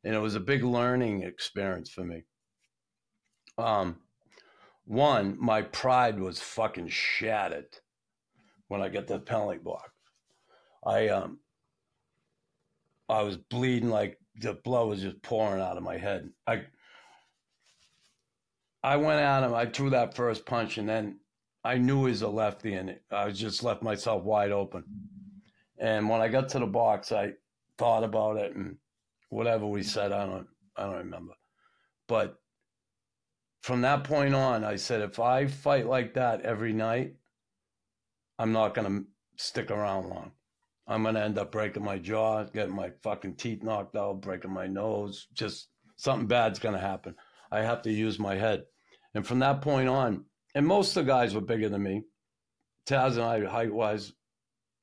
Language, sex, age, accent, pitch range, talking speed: English, male, 50-69, American, 100-125 Hz, 165 wpm